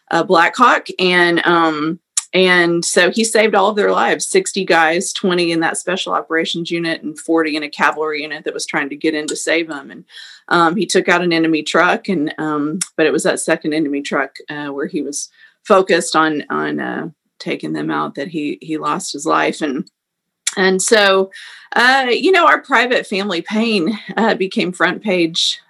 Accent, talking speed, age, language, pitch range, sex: American, 195 wpm, 40-59, English, 165-210 Hz, female